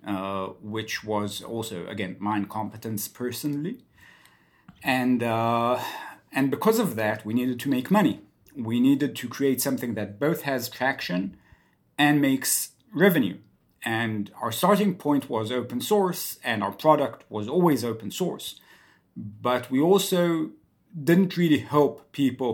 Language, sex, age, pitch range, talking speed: English, male, 50-69, 110-140 Hz, 140 wpm